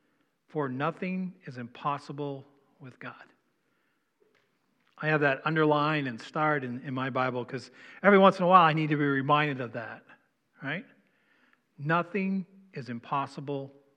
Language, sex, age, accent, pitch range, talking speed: English, male, 50-69, American, 140-180 Hz, 140 wpm